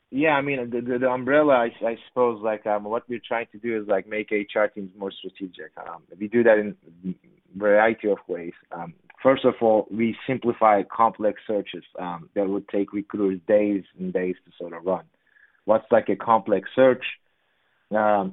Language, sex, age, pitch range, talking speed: English, male, 20-39, 100-115 Hz, 195 wpm